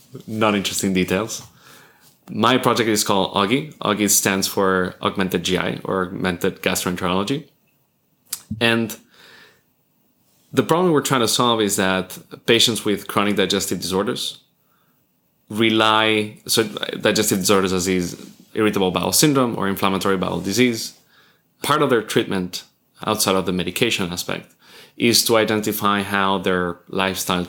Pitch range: 95-110 Hz